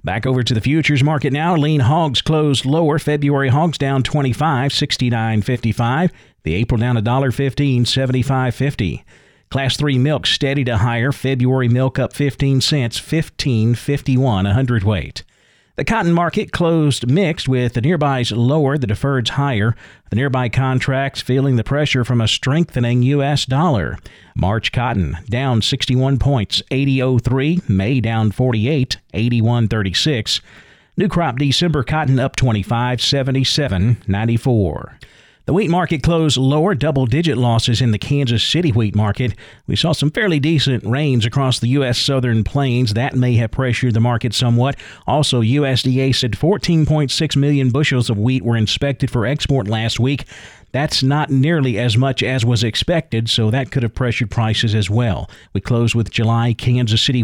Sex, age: male, 50-69